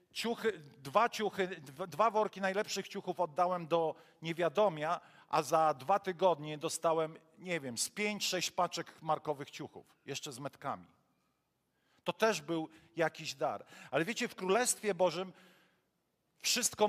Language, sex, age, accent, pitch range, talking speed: Polish, male, 40-59, native, 160-200 Hz, 130 wpm